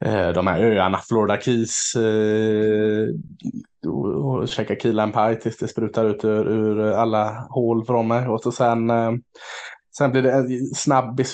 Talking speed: 145 wpm